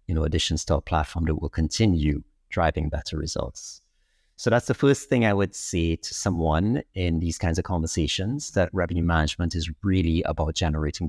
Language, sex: English, male